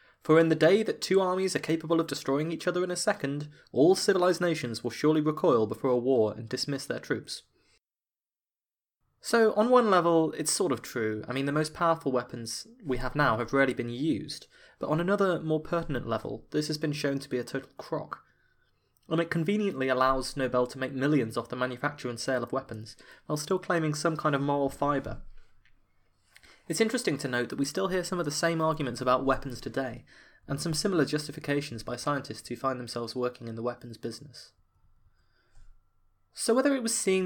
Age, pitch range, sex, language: 20-39, 120-165 Hz, male, English